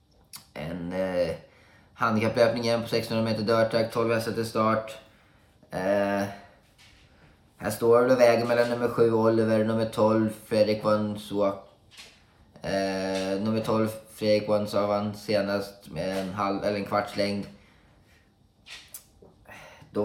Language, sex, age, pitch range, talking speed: Swedish, male, 20-39, 95-110 Hz, 120 wpm